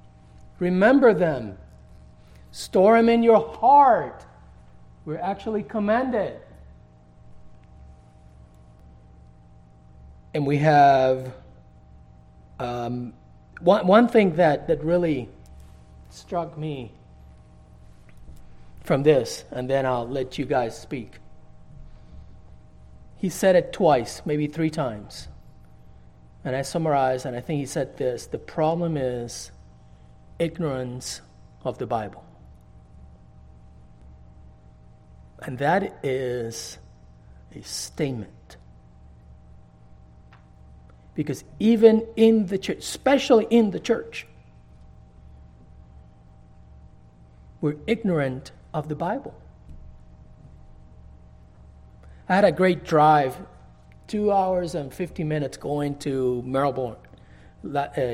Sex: male